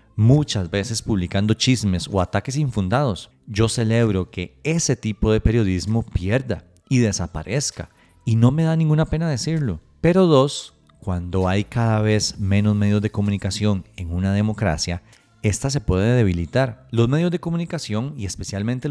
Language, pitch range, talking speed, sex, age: Spanish, 100-135 Hz, 150 wpm, male, 30-49